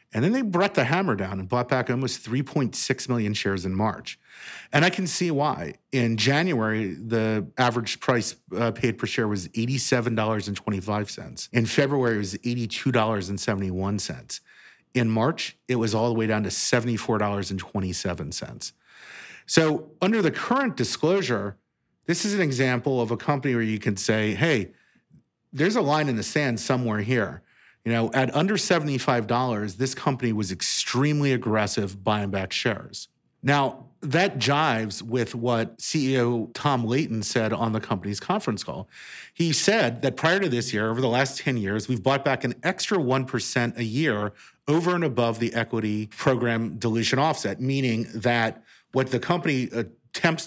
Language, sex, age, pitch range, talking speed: English, male, 40-59, 110-135 Hz, 160 wpm